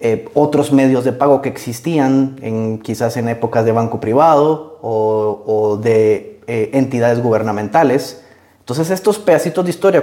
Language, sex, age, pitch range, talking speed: Spanish, male, 30-49, 115-150 Hz, 150 wpm